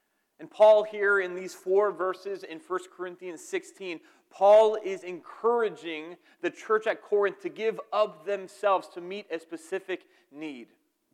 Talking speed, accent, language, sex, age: 145 wpm, American, English, male, 30-49